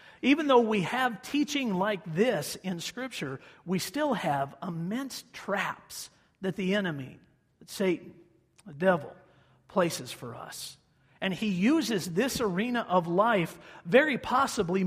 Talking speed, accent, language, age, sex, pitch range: 130 wpm, American, English, 50-69, male, 160-220 Hz